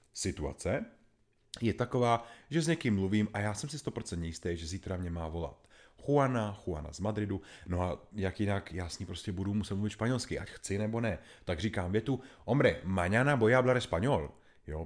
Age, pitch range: 30-49, 85-120 Hz